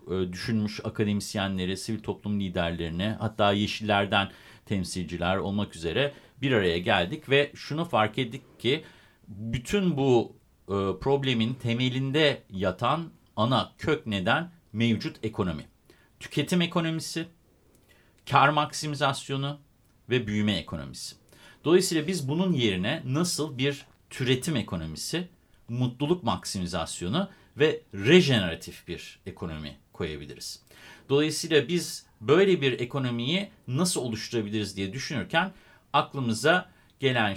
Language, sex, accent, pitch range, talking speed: Turkish, male, native, 105-155 Hz, 100 wpm